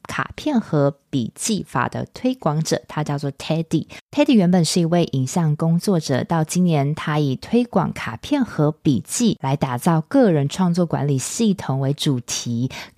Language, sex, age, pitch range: Chinese, female, 20-39, 140-185 Hz